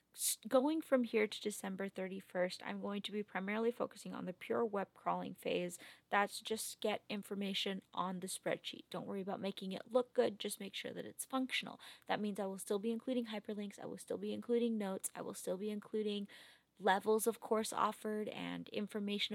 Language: English